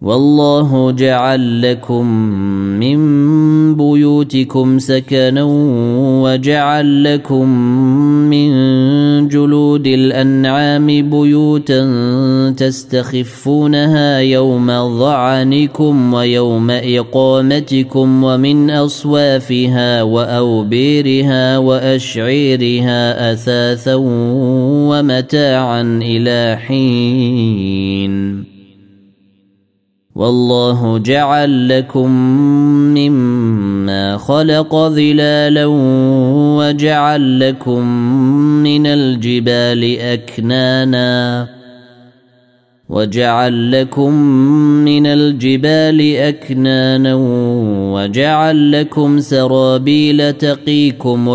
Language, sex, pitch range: Arabic, male, 120-145 Hz